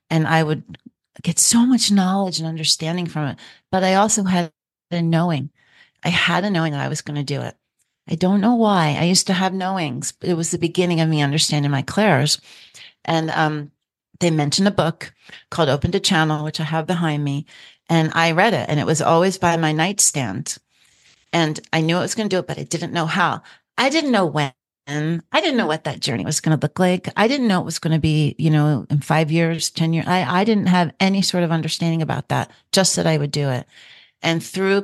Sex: female